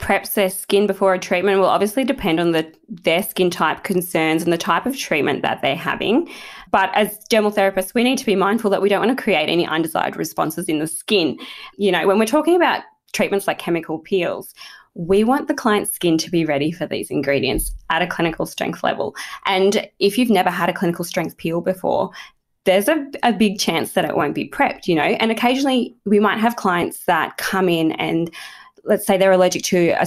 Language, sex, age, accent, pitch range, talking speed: English, female, 20-39, Australian, 170-210 Hz, 215 wpm